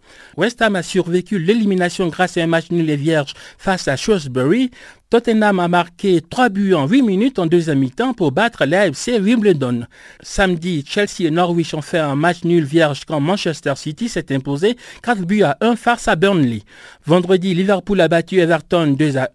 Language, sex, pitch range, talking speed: French, male, 155-210 Hz, 185 wpm